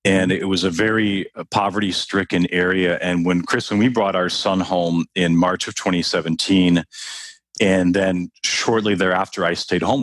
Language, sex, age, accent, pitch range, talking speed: English, male, 40-59, American, 85-110 Hz, 160 wpm